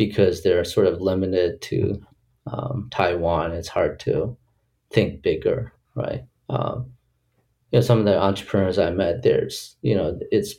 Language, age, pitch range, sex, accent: Chinese, 30-49, 95-120 Hz, male, American